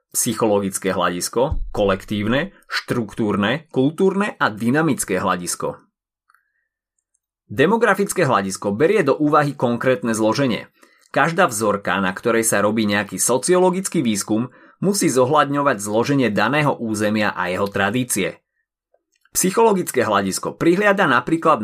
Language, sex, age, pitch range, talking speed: Slovak, male, 30-49, 110-165 Hz, 100 wpm